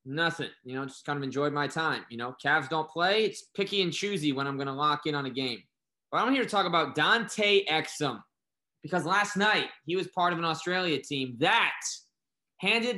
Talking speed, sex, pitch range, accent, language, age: 215 wpm, male, 140-190 Hz, American, English, 20-39